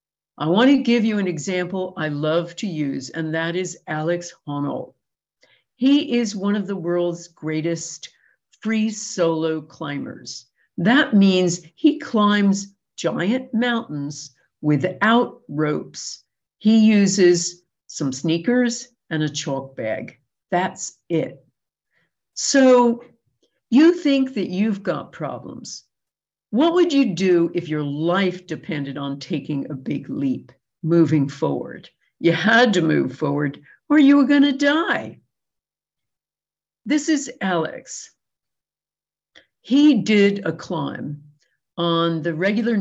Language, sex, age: English, female, 60-79